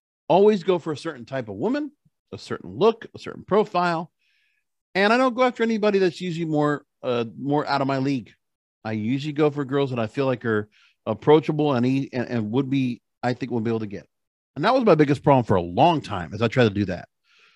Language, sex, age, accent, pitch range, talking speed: English, male, 40-59, American, 130-195 Hz, 235 wpm